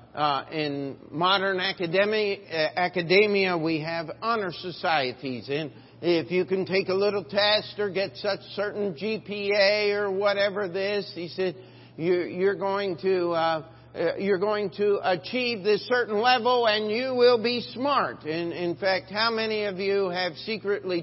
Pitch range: 120-190 Hz